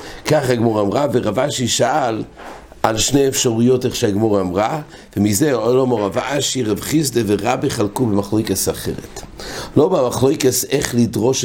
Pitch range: 100-125 Hz